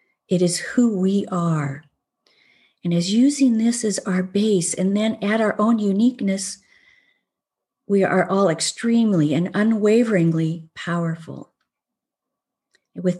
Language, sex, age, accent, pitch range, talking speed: English, female, 50-69, American, 170-210 Hz, 120 wpm